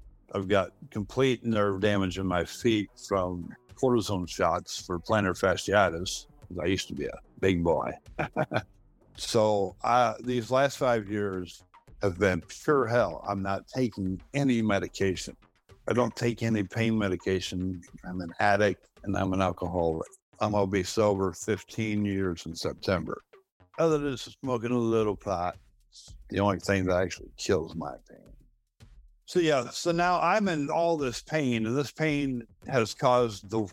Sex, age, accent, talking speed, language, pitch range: male, 60-79, American, 155 wpm, English, 95-120 Hz